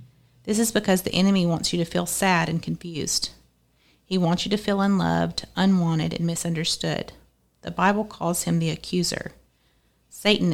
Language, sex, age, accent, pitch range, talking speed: English, female, 40-59, American, 155-190 Hz, 160 wpm